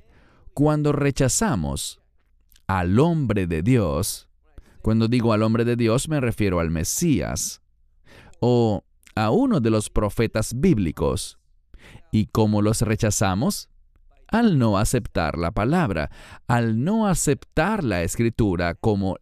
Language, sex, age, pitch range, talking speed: English, male, 40-59, 90-135 Hz, 120 wpm